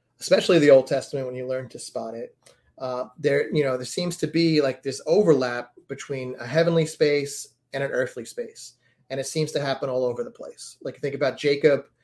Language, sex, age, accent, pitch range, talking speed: English, male, 30-49, American, 125-150 Hz, 210 wpm